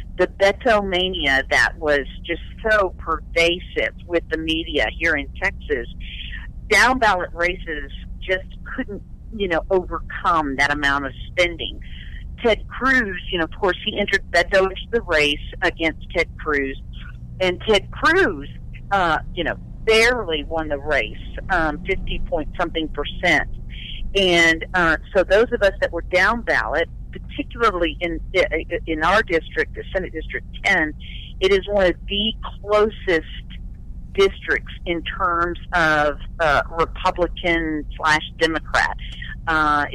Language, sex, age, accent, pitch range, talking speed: English, female, 50-69, American, 145-190 Hz, 135 wpm